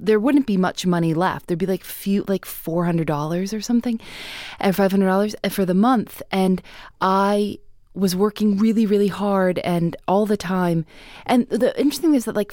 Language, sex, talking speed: English, female, 175 wpm